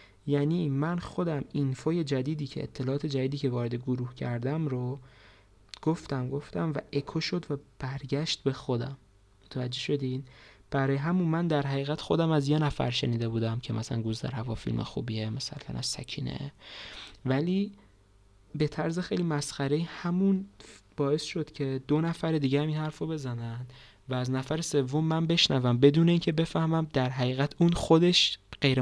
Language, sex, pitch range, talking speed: Persian, male, 125-160 Hz, 155 wpm